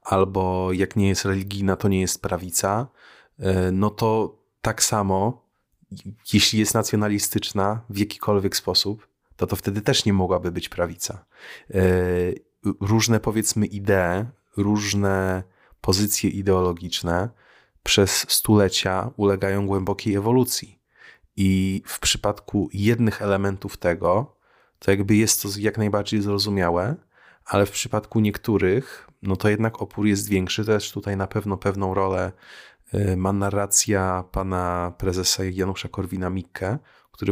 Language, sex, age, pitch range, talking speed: Polish, male, 30-49, 95-110 Hz, 120 wpm